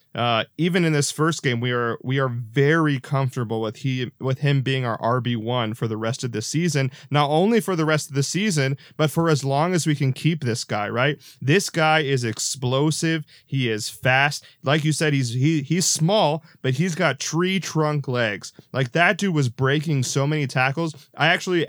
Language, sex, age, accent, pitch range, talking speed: English, male, 20-39, American, 125-155 Hz, 205 wpm